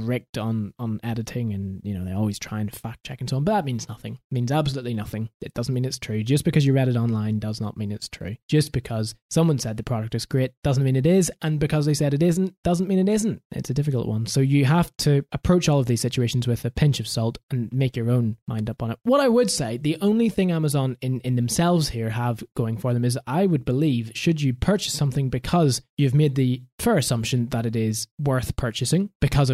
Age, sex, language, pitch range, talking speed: 20-39, male, English, 115-150 Hz, 250 wpm